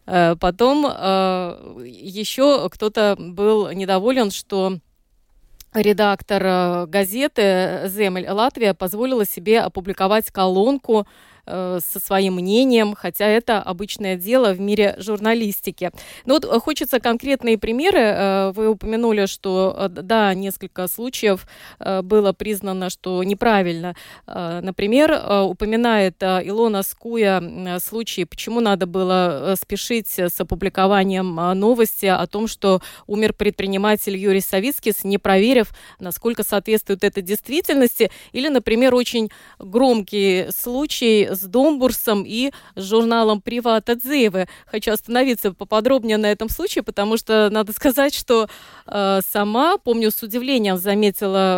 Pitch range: 190-235 Hz